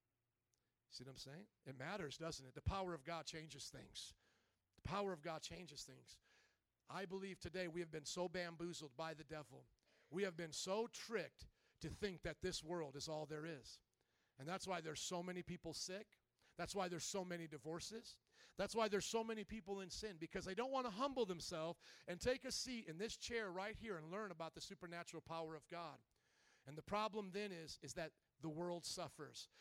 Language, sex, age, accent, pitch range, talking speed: English, male, 40-59, American, 160-210 Hz, 205 wpm